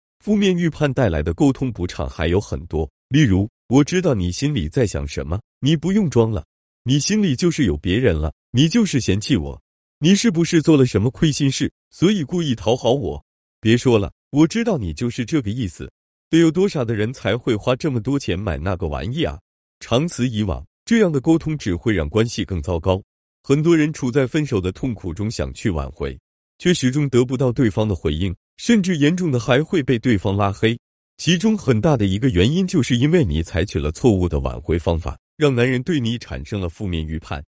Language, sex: Chinese, male